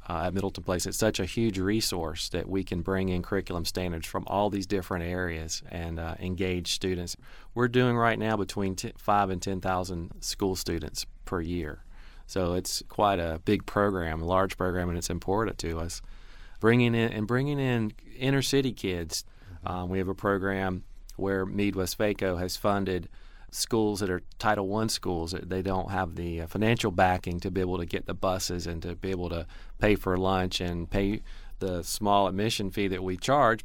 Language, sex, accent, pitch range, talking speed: English, male, American, 90-100 Hz, 195 wpm